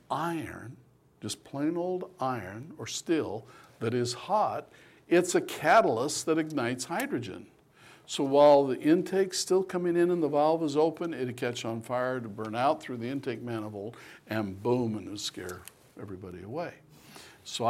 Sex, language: male, English